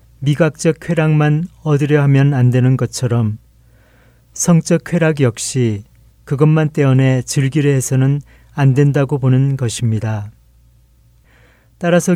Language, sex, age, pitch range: Korean, male, 40-59, 115-155 Hz